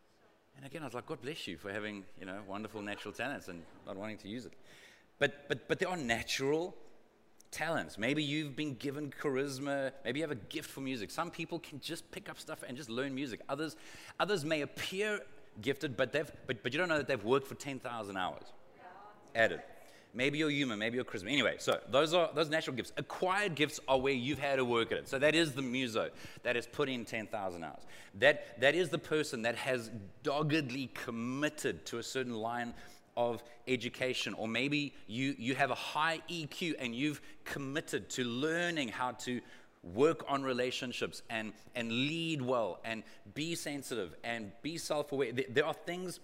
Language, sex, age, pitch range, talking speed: English, male, 30-49, 120-155 Hz, 195 wpm